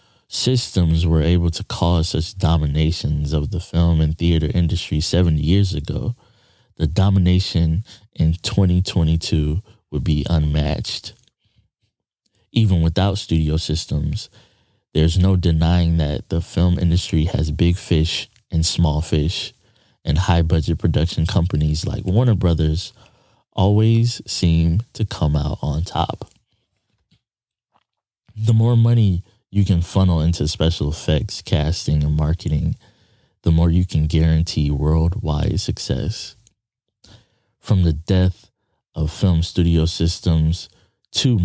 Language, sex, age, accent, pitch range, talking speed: English, male, 20-39, American, 80-100 Hz, 120 wpm